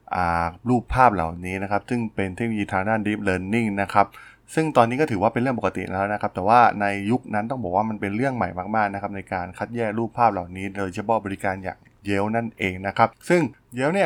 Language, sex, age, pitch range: Thai, male, 20-39, 95-120 Hz